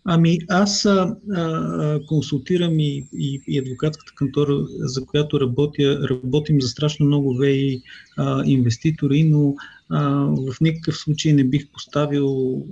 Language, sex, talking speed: Bulgarian, male, 125 wpm